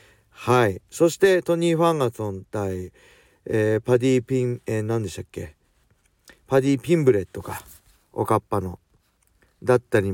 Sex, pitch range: male, 95-130 Hz